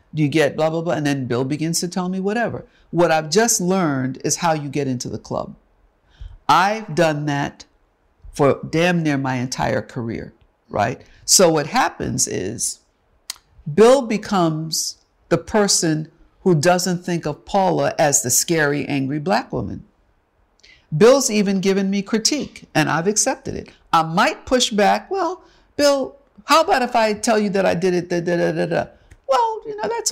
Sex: female